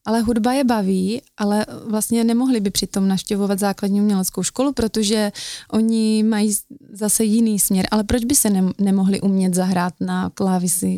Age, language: 20-39, Czech